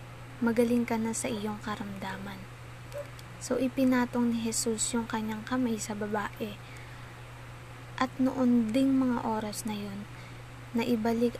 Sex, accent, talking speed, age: female, native, 120 wpm, 20-39